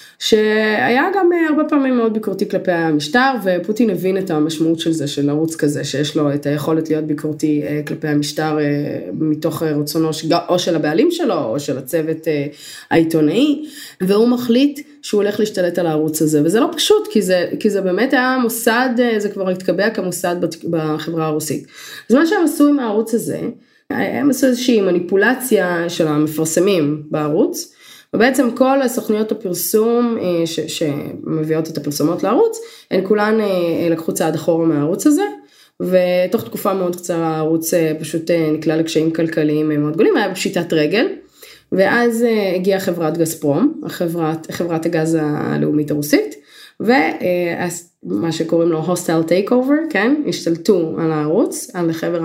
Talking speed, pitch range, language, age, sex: 140 wpm, 160-230 Hz, Hebrew, 20-39, female